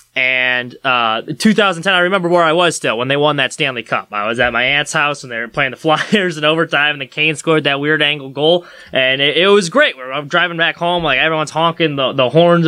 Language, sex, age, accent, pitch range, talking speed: English, male, 20-39, American, 145-205 Hz, 250 wpm